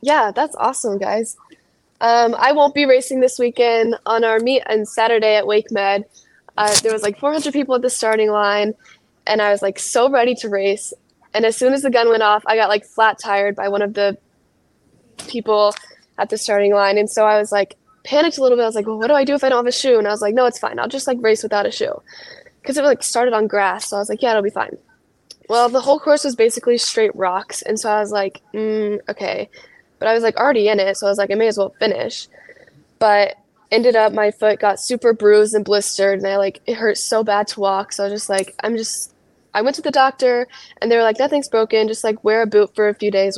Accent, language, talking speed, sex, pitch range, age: American, English, 255 wpm, female, 205-245 Hz, 10-29